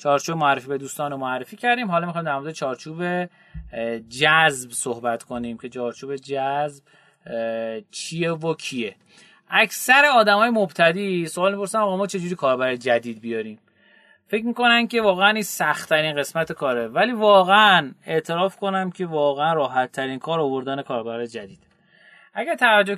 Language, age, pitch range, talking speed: Persian, 30-49, 135-195 Hz, 135 wpm